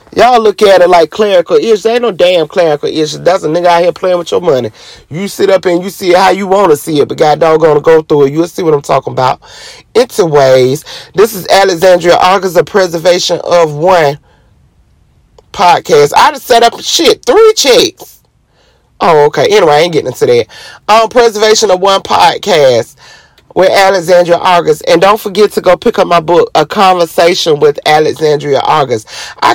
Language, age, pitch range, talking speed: English, 30-49, 155-225 Hz, 195 wpm